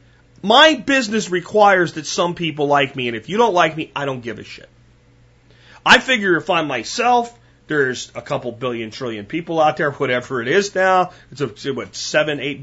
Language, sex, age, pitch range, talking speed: Malay, male, 30-49, 125-190 Hz, 185 wpm